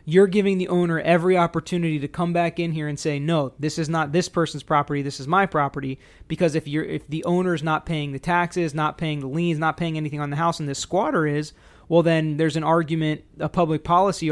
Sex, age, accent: male, 30-49, American